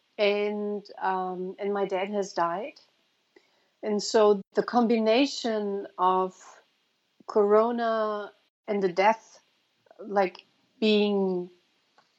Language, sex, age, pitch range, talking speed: English, female, 50-69, 195-225 Hz, 90 wpm